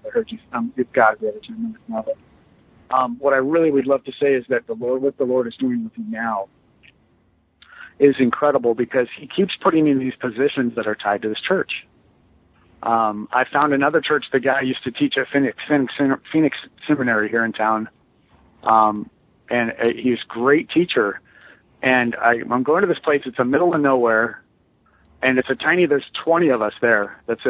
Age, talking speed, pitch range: 50-69, 195 wpm, 120-150 Hz